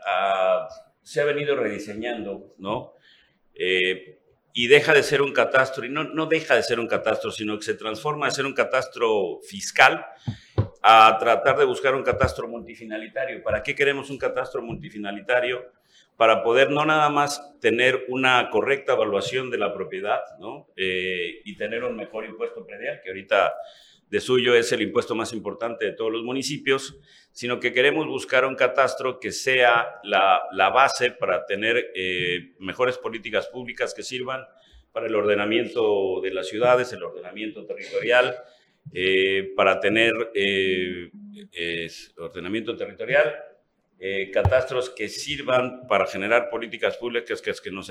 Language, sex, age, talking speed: Spanish, male, 50-69, 155 wpm